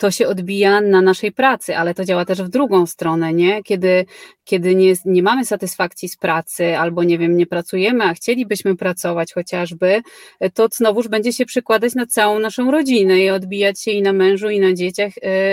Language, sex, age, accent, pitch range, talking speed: Polish, female, 30-49, native, 190-240 Hz, 190 wpm